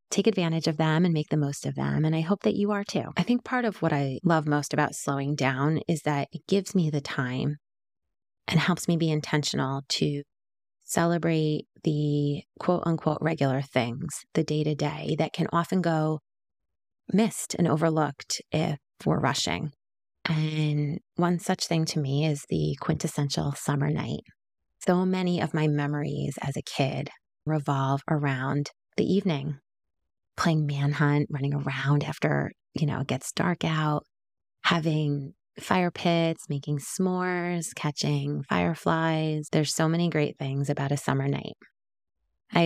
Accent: American